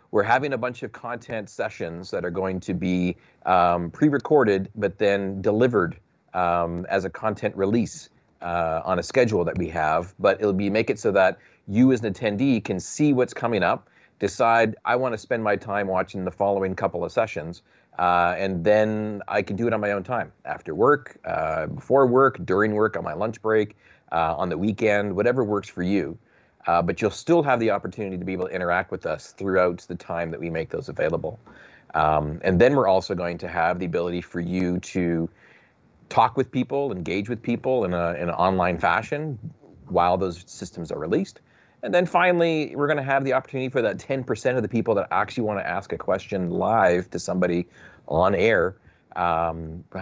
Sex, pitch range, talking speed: male, 90-120 Hz, 200 wpm